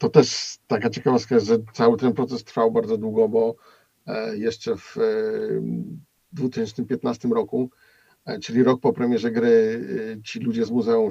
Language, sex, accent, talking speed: Polish, male, native, 135 wpm